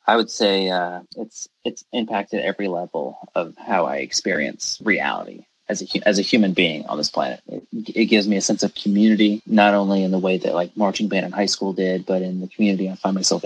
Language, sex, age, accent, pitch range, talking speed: English, male, 20-39, American, 90-105 Hz, 225 wpm